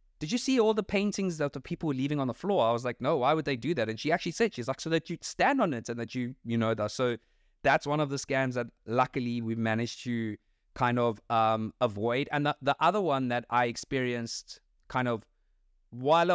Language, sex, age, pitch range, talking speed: English, male, 20-39, 115-145 Hz, 245 wpm